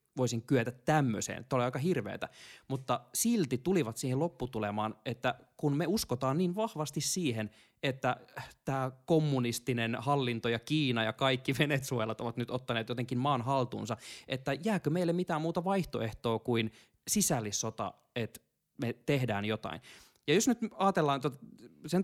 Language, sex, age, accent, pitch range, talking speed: Finnish, male, 20-39, native, 115-150 Hz, 140 wpm